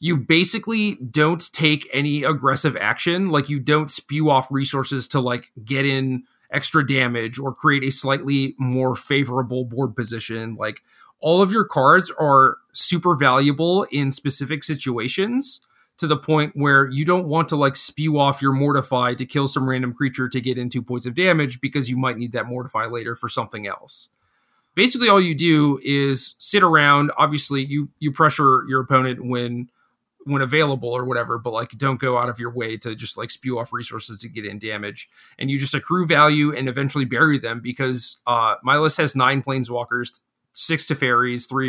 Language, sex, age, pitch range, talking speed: English, male, 30-49, 125-145 Hz, 185 wpm